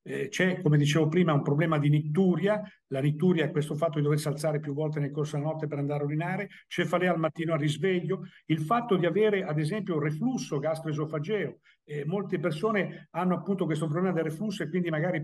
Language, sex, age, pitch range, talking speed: Italian, male, 50-69, 150-185 Hz, 210 wpm